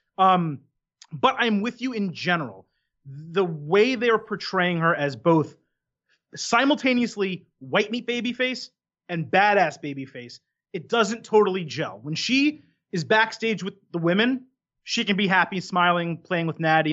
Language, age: English, 30-49